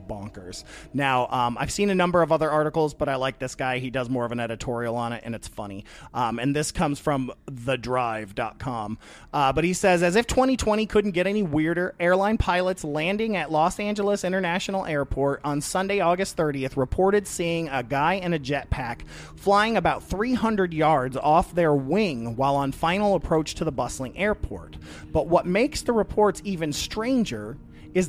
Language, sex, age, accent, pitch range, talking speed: English, male, 30-49, American, 135-185 Hz, 185 wpm